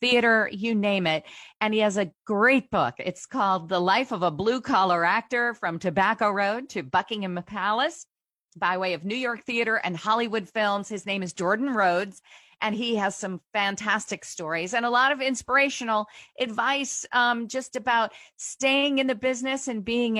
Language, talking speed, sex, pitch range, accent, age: English, 175 wpm, female, 185-240 Hz, American, 40-59